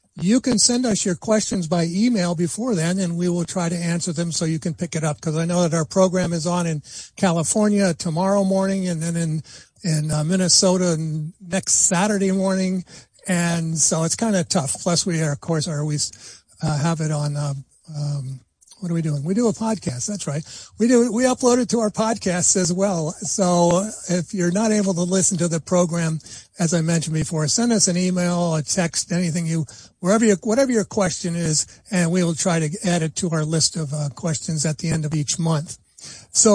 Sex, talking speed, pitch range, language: male, 215 wpm, 160-195 Hz, English